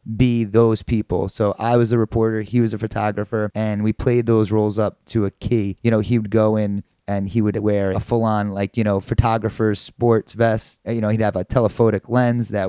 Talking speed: 225 wpm